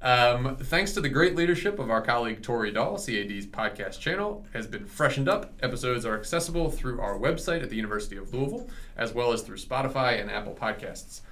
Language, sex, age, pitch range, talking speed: English, male, 30-49, 110-145 Hz, 195 wpm